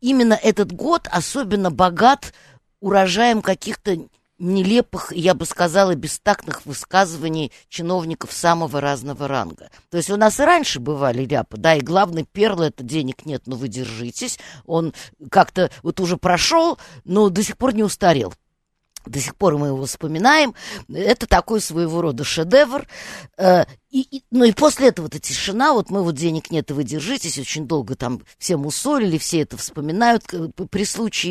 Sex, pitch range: female, 155-210 Hz